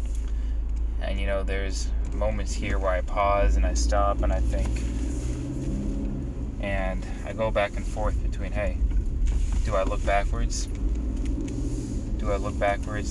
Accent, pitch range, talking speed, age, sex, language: American, 70-100 Hz, 140 wpm, 20-39, male, English